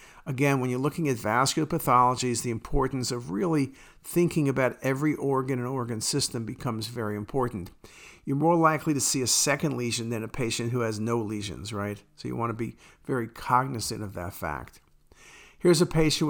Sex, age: male, 50-69